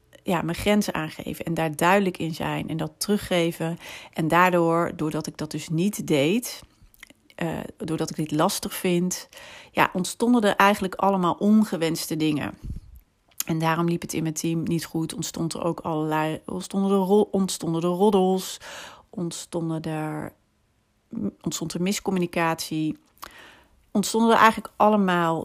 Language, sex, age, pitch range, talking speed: Dutch, female, 40-59, 160-205 Hz, 145 wpm